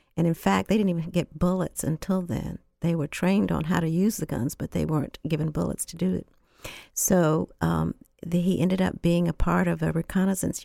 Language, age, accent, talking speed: English, 60-79, American, 220 wpm